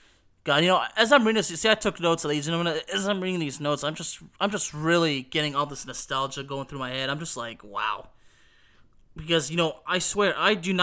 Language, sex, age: English, male, 20-39